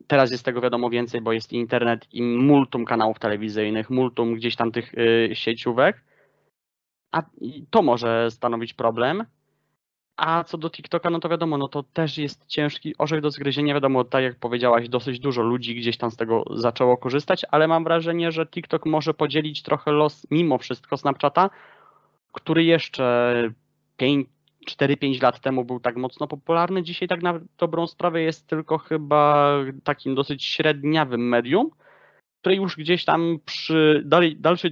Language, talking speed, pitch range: Polish, 155 wpm, 125-160 Hz